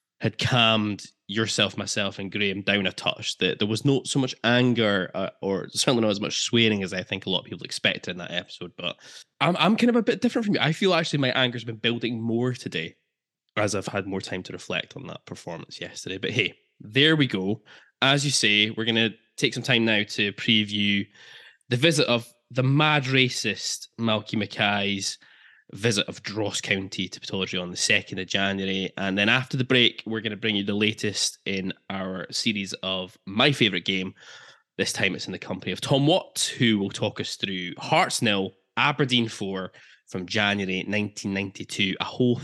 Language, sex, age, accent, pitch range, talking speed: English, male, 10-29, British, 95-125 Hz, 200 wpm